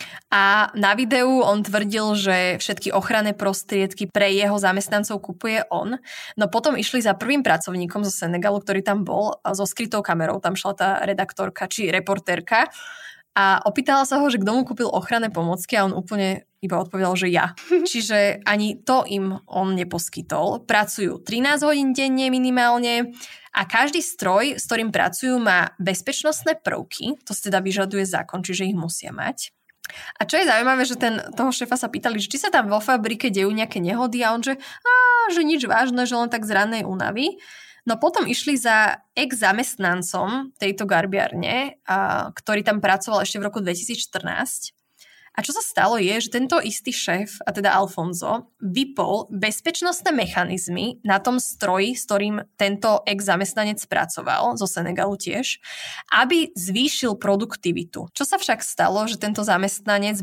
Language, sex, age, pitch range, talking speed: Slovak, female, 20-39, 195-250 Hz, 160 wpm